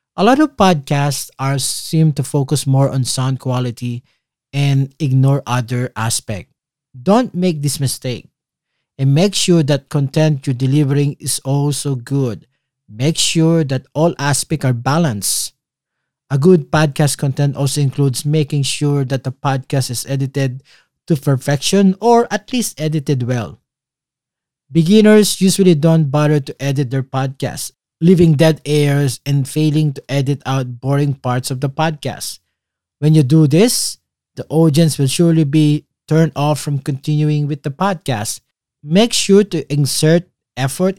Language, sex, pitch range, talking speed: English, male, 135-160 Hz, 145 wpm